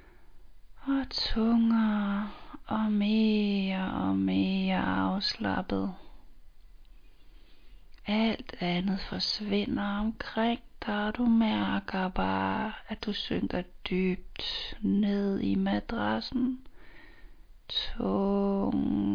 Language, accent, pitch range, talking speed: Danish, native, 170-225 Hz, 75 wpm